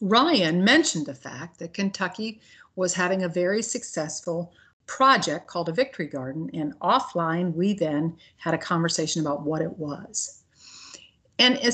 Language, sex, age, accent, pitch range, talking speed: English, female, 50-69, American, 165-220 Hz, 145 wpm